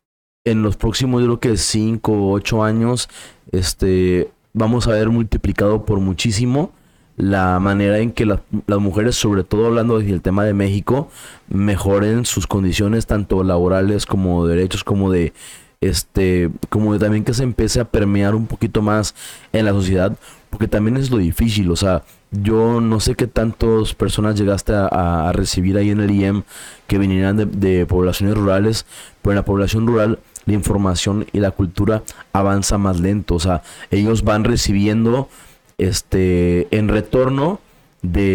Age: 20-39